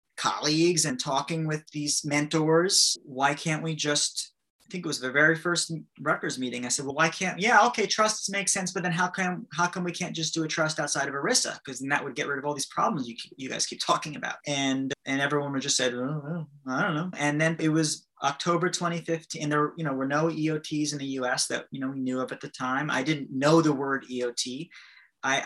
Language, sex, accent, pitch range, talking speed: English, male, American, 130-160 Hz, 245 wpm